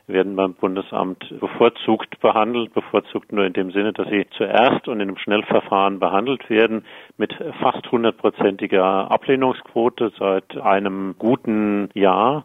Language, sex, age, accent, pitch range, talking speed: German, male, 50-69, German, 95-105 Hz, 130 wpm